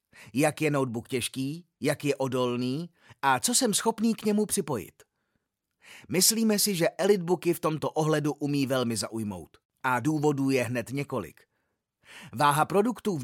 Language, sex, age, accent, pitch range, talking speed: Czech, male, 30-49, native, 130-170 Hz, 145 wpm